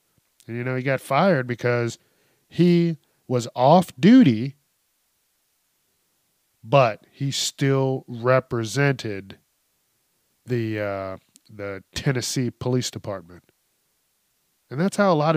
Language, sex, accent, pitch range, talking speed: English, male, American, 110-135 Hz, 100 wpm